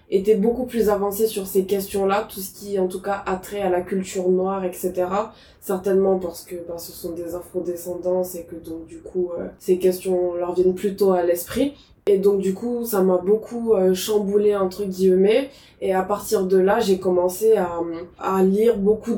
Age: 20-39